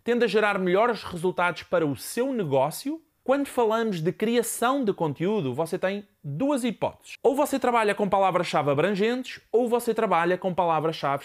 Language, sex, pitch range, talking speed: Portuguese, male, 175-230 Hz, 160 wpm